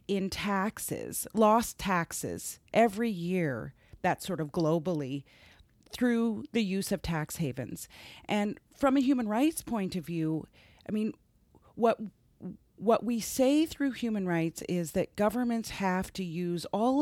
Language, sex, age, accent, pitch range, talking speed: English, female, 40-59, American, 165-215 Hz, 140 wpm